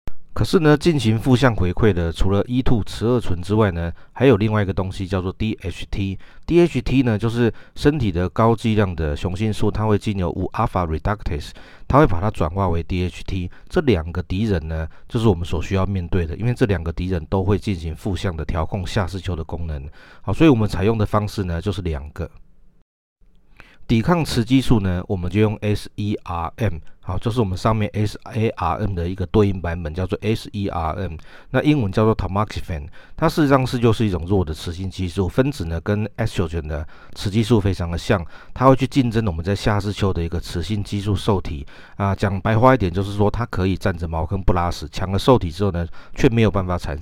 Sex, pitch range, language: male, 85-110 Hz, Chinese